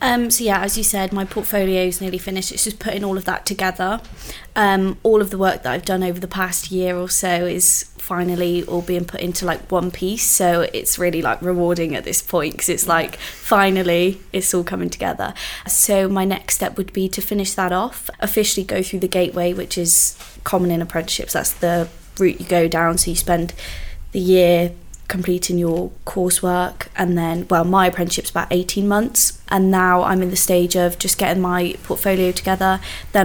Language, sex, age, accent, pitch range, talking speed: English, female, 20-39, British, 180-195 Hz, 200 wpm